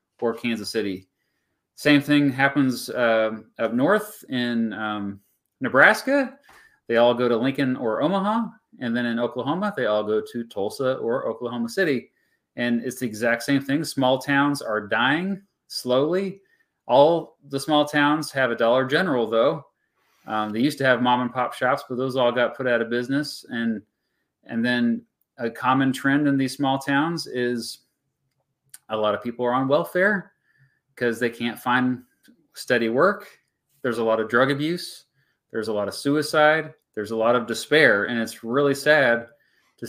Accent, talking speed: American, 170 wpm